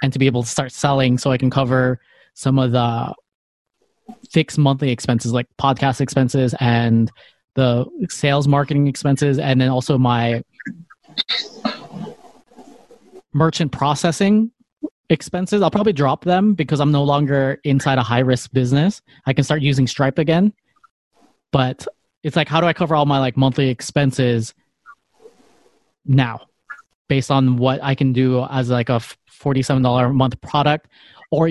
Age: 20-39